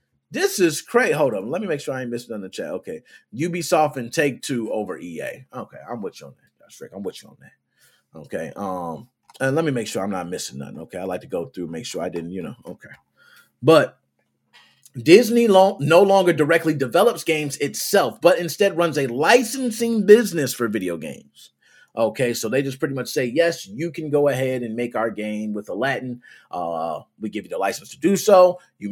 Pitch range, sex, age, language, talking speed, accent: 125-195 Hz, male, 30-49, English, 220 wpm, American